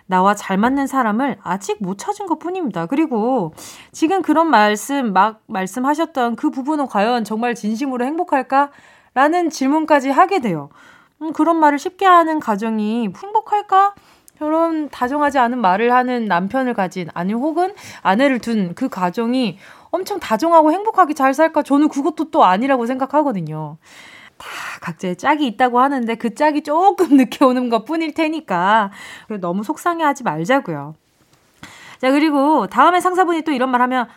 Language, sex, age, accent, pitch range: Korean, female, 20-39, native, 215-310 Hz